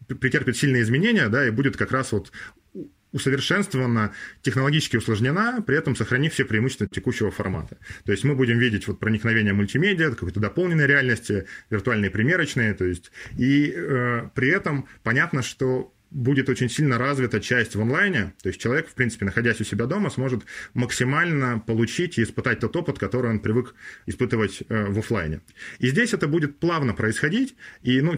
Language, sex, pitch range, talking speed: Russian, male, 105-135 Hz, 165 wpm